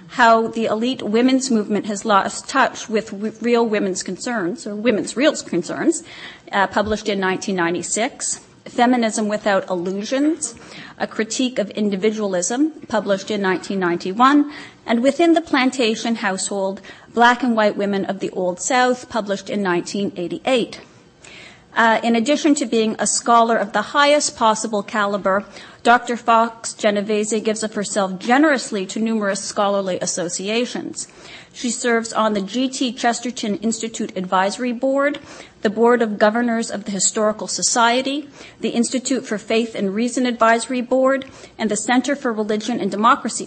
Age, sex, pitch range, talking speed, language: 40-59, female, 200-245 Hz, 140 wpm, English